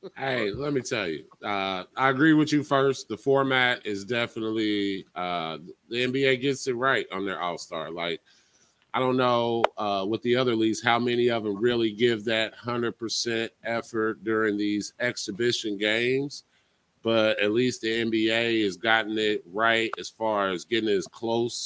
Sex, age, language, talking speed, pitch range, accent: male, 30-49, English, 170 wpm, 105-125 Hz, American